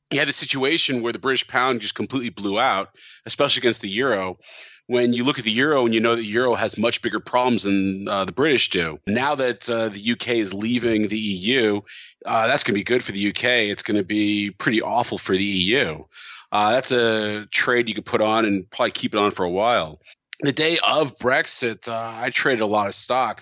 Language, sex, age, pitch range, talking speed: English, male, 30-49, 105-120 Hz, 230 wpm